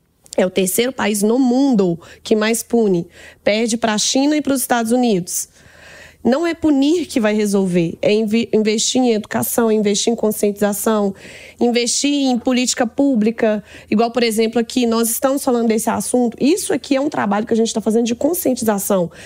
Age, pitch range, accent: 20-39, 210-250 Hz, Brazilian